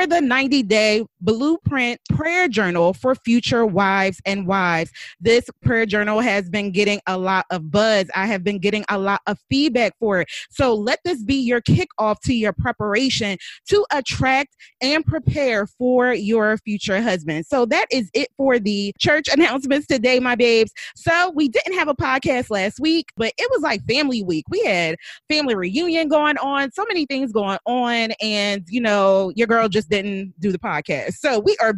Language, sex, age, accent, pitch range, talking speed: English, female, 20-39, American, 205-265 Hz, 180 wpm